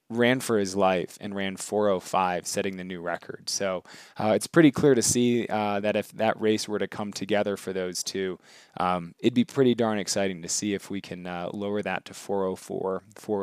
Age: 20-39